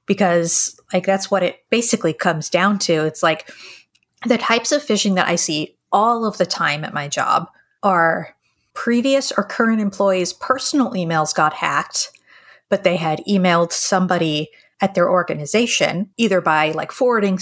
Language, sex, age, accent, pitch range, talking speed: English, female, 30-49, American, 165-200 Hz, 160 wpm